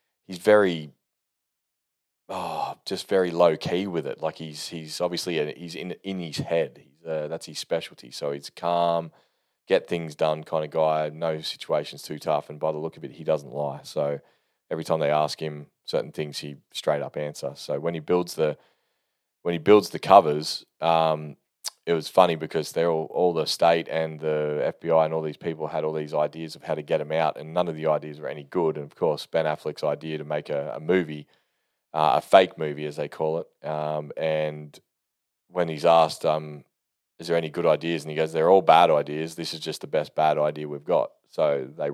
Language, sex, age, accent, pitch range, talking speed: English, male, 20-39, Australian, 75-85 Hz, 215 wpm